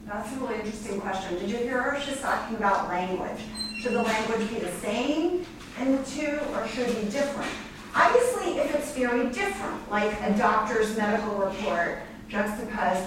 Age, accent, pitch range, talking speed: 40-59, American, 180-240 Hz, 175 wpm